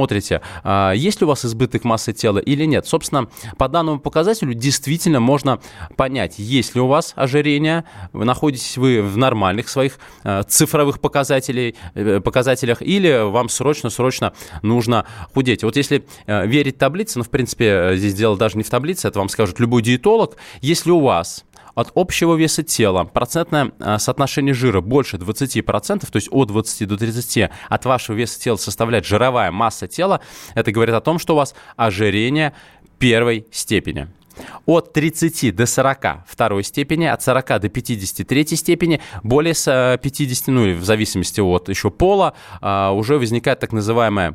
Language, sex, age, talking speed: Russian, male, 20-39, 155 wpm